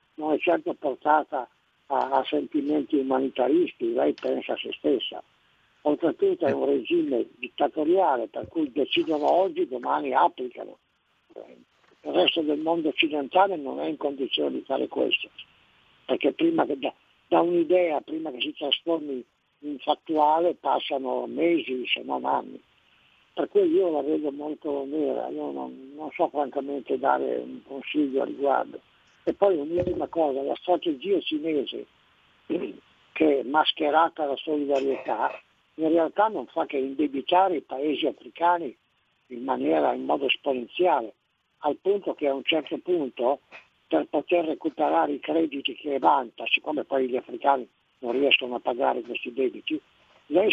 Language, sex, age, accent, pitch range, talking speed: Italian, male, 60-79, native, 135-180 Hz, 145 wpm